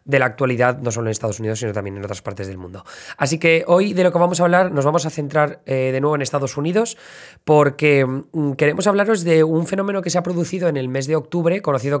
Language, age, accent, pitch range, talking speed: Spanish, 20-39, Spanish, 130-165 Hz, 245 wpm